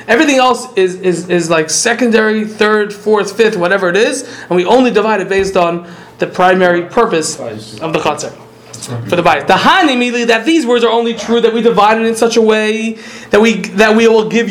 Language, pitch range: Polish, 210-255 Hz